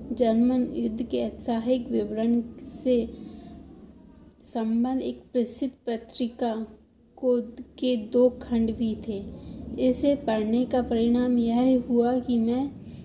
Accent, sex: native, female